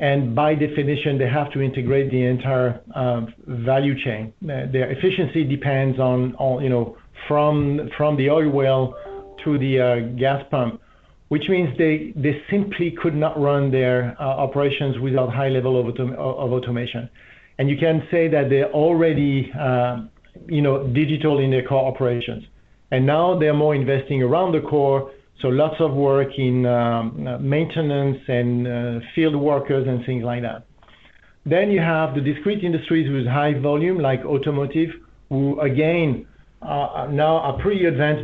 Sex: male